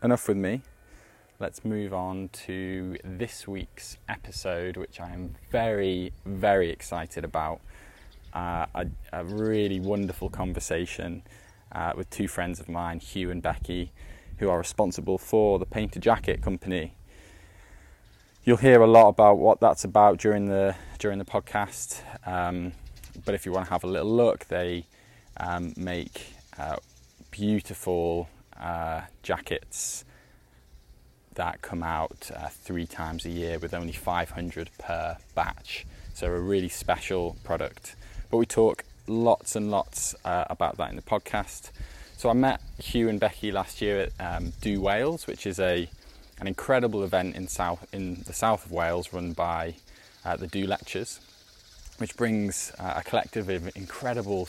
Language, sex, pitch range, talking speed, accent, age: English, male, 85-105 Hz, 150 wpm, British, 20-39